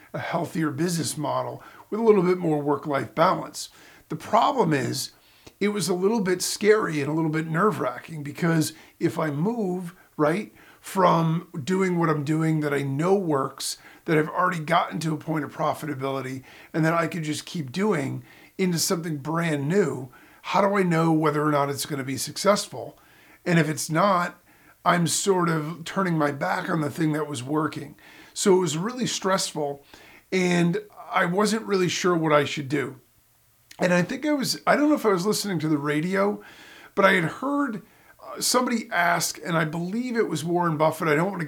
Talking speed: 190 wpm